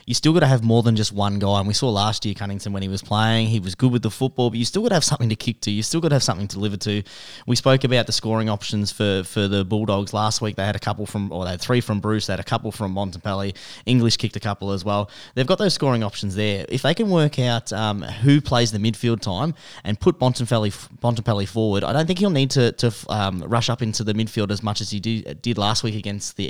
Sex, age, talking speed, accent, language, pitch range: male, 10-29, 280 wpm, Australian, English, 100-125 Hz